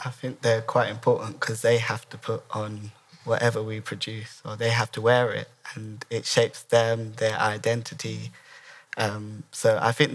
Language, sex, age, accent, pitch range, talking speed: English, male, 10-29, British, 110-125 Hz, 175 wpm